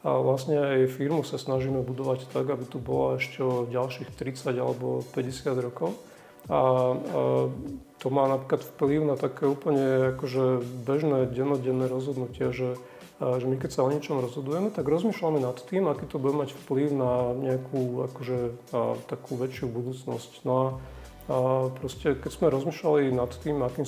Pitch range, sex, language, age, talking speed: 125-140 Hz, male, Slovak, 40-59, 155 wpm